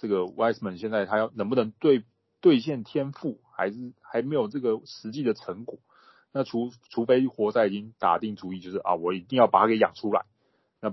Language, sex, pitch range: Chinese, male, 95-120 Hz